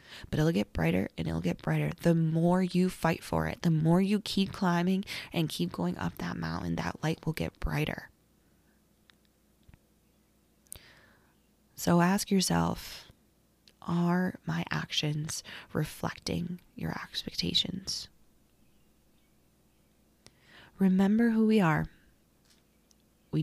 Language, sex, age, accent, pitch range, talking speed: English, female, 20-39, American, 135-185 Hz, 115 wpm